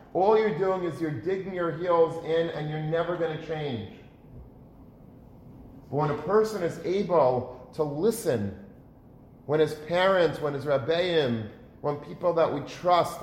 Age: 40-59